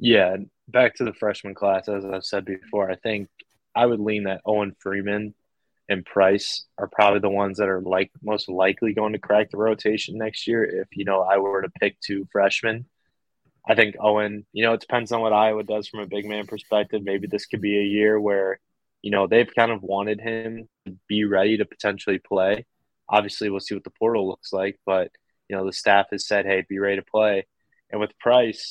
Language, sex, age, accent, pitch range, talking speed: English, male, 20-39, American, 100-110 Hz, 215 wpm